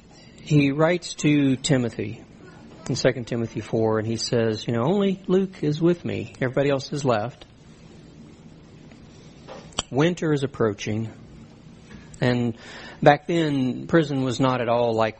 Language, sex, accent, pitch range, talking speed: English, male, American, 110-160 Hz, 135 wpm